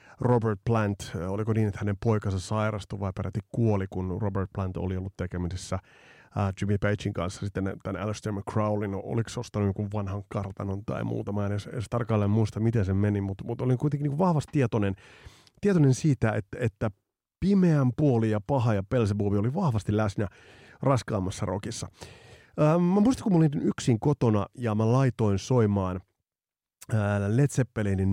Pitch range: 105-135 Hz